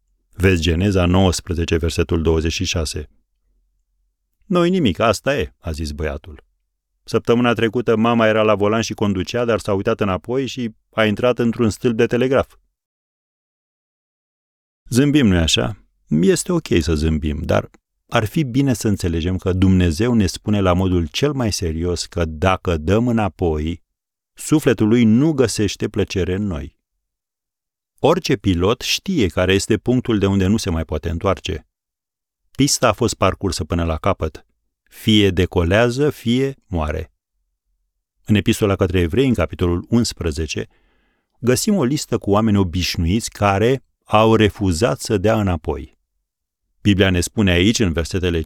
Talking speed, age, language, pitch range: 140 wpm, 40-59, Romanian, 85-110 Hz